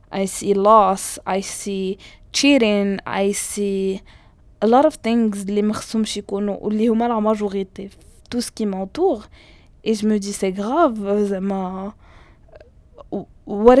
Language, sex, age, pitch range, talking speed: Arabic, female, 20-39, 190-230 Hz, 135 wpm